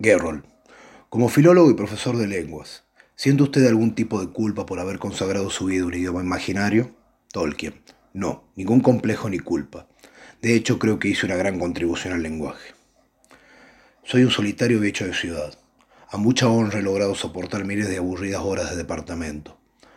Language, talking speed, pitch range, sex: Spanish, 170 wpm, 95-115 Hz, male